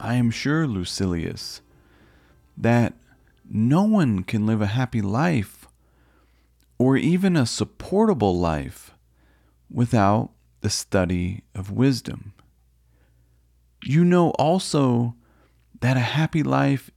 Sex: male